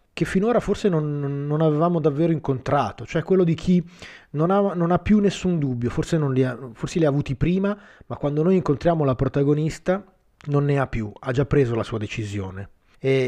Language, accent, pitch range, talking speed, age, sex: Italian, native, 120-160 Hz, 180 wpm, 30-49, male